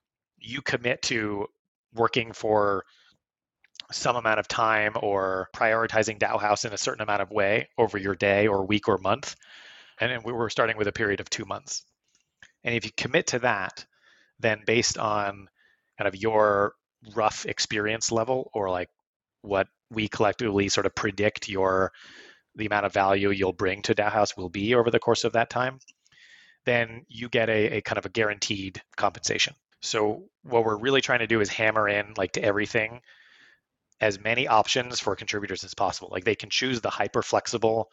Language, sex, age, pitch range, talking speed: English, male, 30-49, 100-115 Hz, 180 wpm